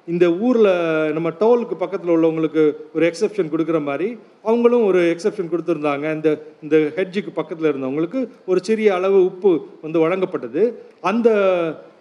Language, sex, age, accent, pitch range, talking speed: Tamil, male, 40-59, native, 155-200 Hz, 130 wpm